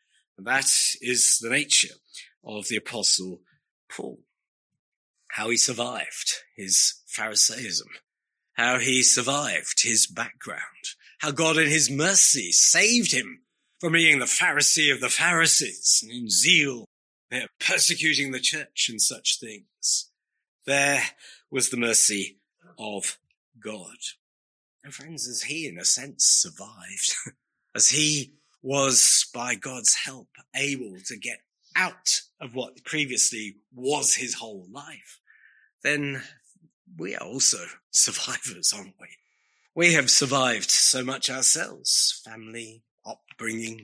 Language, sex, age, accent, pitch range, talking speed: English, male, 40-59, British, 115-150 Hz, 120 wpm